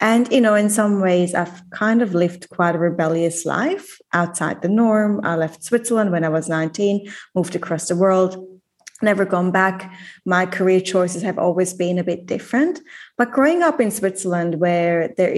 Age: 30-49